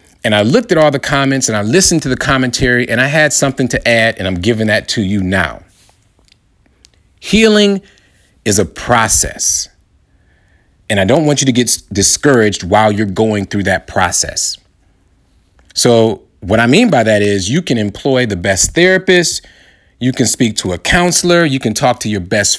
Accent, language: American, English